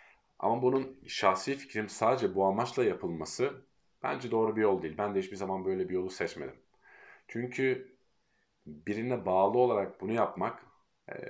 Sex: male